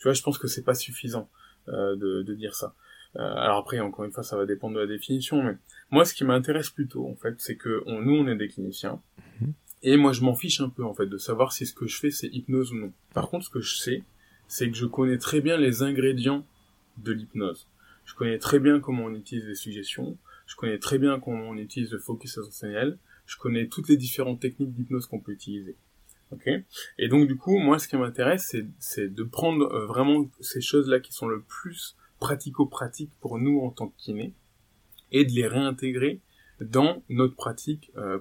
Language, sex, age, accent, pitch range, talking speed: French, male, 20-39, French, 110-140 Hz, 225 wpm